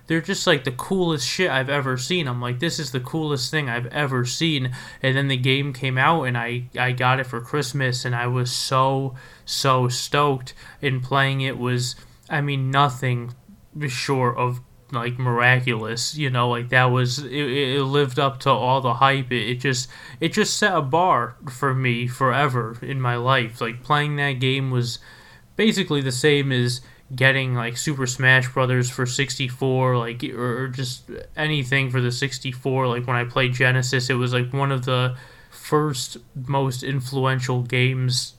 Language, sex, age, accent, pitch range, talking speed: English, male, 20-39, American, 125-140 Hz, 180 wpm